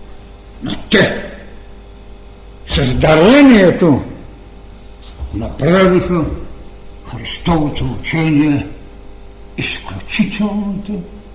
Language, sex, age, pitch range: Bulgarian, male, 60-79, 145-210 Hz